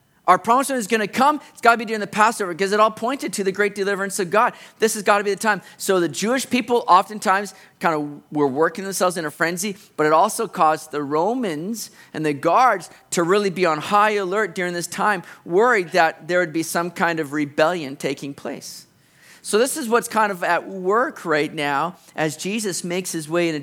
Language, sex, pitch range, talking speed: English, male, 155-210 Hz, 225 wpm